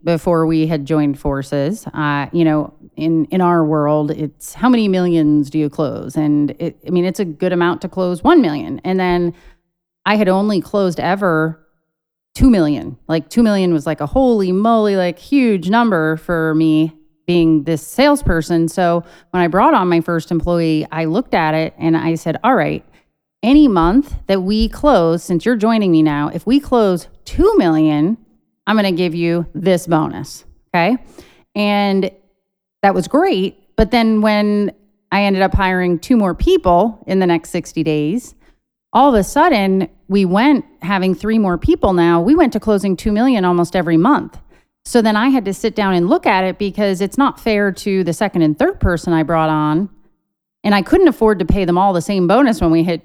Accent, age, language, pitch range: American, 30-49, English, 165-215 Hz